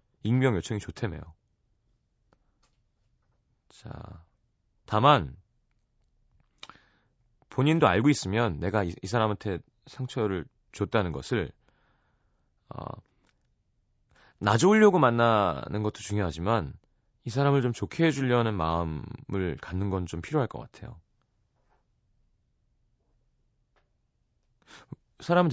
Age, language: 30-49, Korean